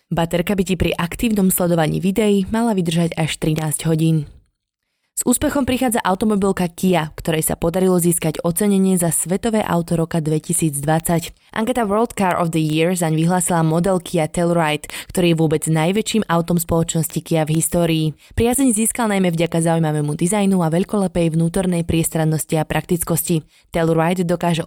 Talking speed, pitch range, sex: 150 wpm, 160-195 Hz, female